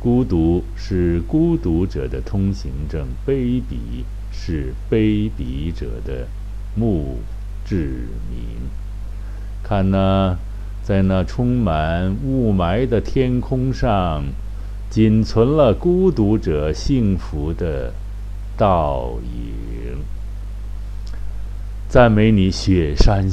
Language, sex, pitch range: Chinese, male, 90-110 Hz